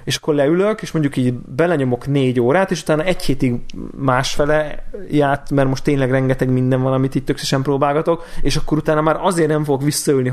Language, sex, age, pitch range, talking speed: Hungarian, male, 20-39, 120-140 Hz, 190 wpm